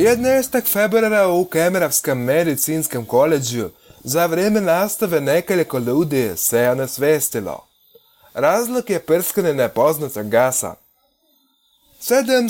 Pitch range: 135-215 Hz